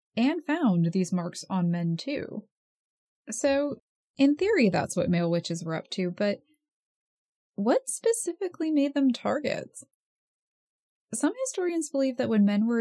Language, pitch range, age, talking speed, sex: English, 185-260 Hz, 20-39, 140 wpm, female